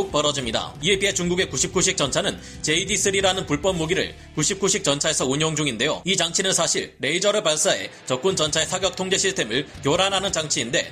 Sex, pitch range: male, 150-190 Hz